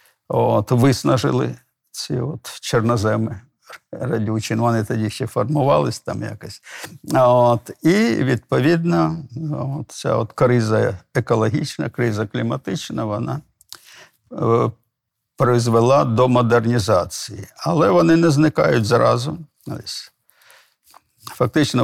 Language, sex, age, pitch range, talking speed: Ukrainian, male, 50-69, 110-140 Hz, 90 wpm